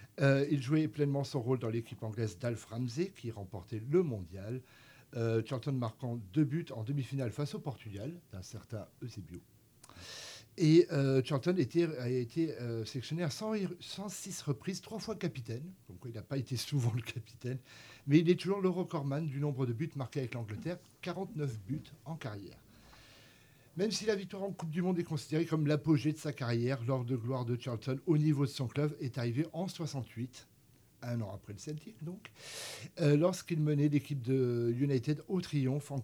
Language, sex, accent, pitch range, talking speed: French, male, French, 120-155 Hz, 185 wpm